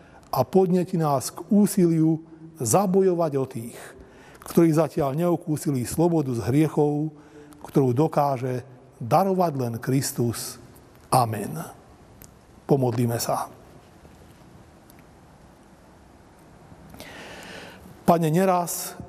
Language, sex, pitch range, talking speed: Slovak, male, 130-170 Hz, 75 wpm